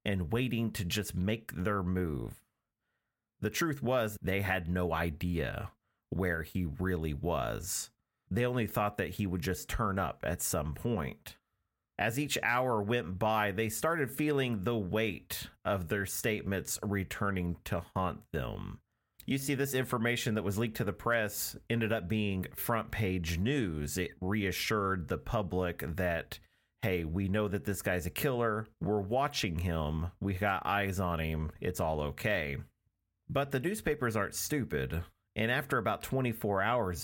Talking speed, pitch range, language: 155 wpm, 90-110 Hz, English